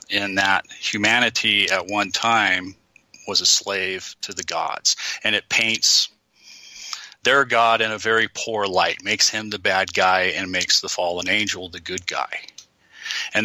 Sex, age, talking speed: male, 40-59, 160 wpm